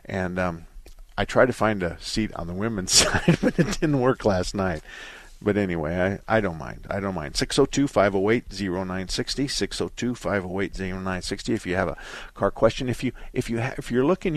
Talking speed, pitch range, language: 245 wpm, 95-115 Hz, English